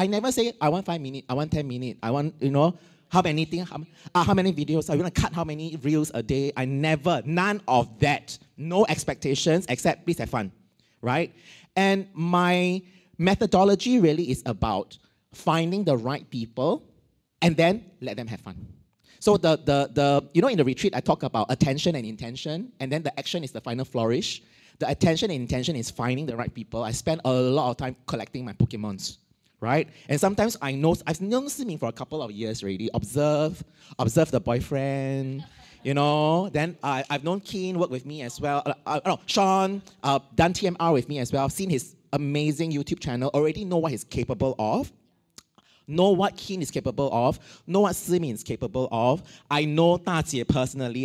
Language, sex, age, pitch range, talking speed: English, male, 30-49, 130-175 Hz, 200 wpm